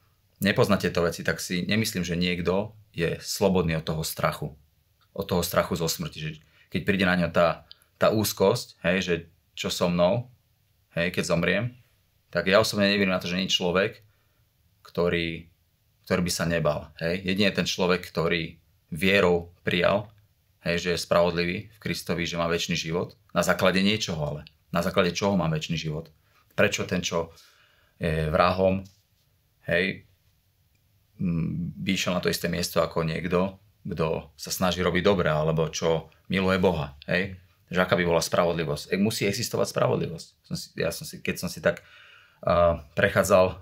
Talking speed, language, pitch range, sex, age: 160 wpm, Slovak, 85-100 Hz, male, 30-49